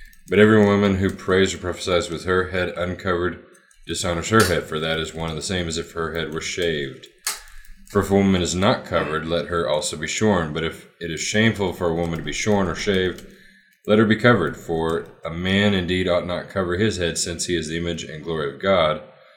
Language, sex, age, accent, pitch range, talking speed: English, male, 20-39, American, 85-95 Hz, 230 wpm